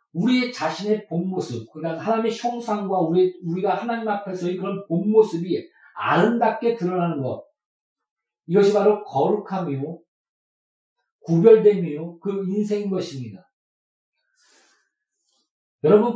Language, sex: Korean, male